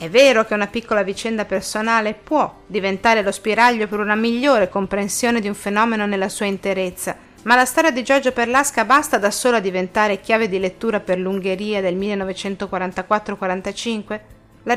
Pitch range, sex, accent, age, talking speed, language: 190-245 Hz, female, native, 40-59, 165 wpm, Italian